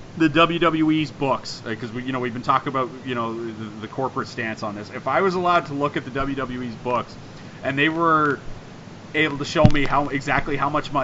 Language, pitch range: English, 120-140 Hz